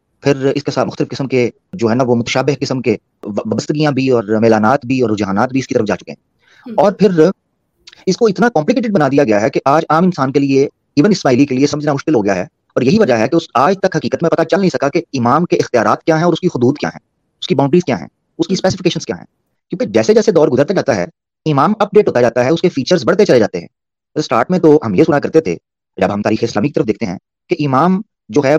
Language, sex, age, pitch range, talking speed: Urdu, male, 30-49, 125-165 Hz, 270 wpm